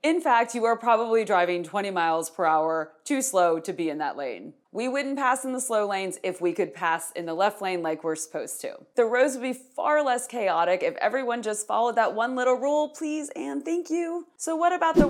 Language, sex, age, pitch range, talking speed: English, female, 30-49, 165-245 Hz, 235 wpm